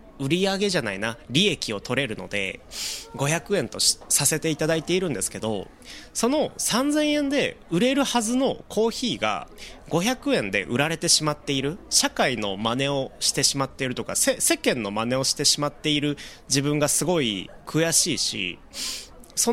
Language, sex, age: Japanese, male, 30-49